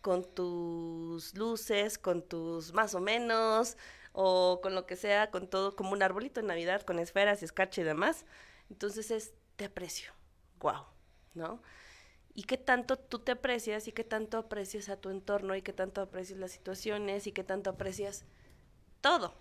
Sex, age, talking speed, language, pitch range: female, 20-39, 175 wpm, Spanish, 175-210 Hz